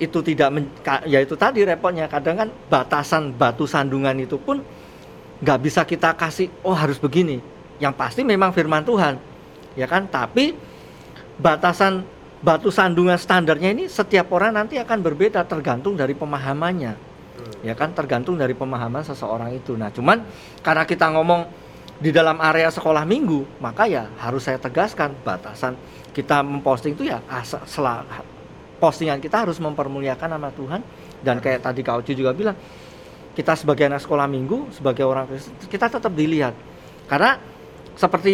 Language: Indonesian